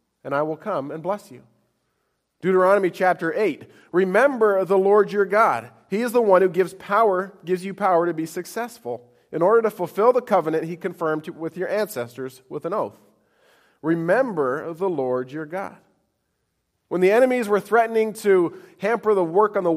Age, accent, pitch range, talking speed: 40-59, American, 165-220 Hz, 175 wpm